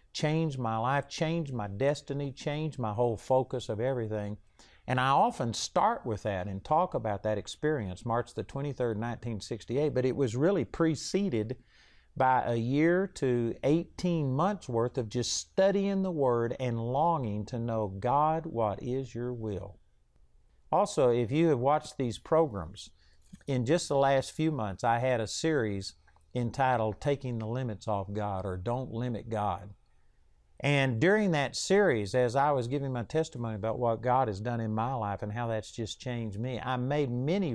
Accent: American